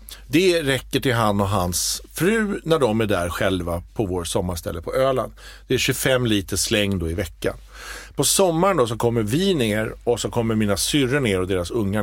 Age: 50-69